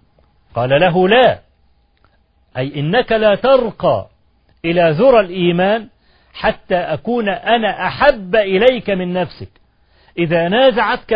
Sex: male